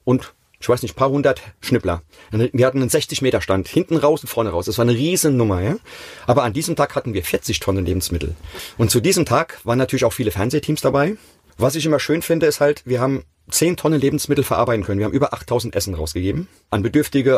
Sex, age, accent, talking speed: male, 30-49, German, 220 wpm